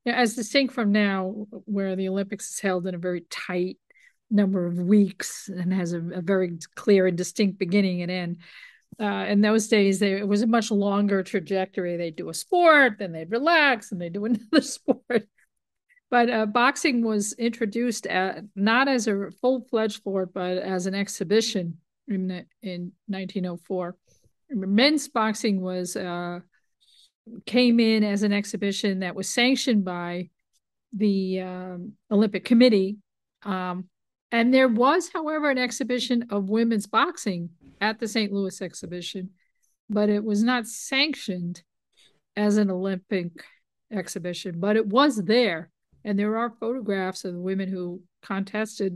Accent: American